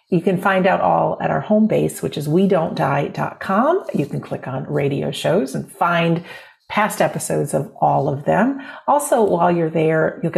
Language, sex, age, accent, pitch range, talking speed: English, female, 50-69, American, 150-220 Hz, 180 wpm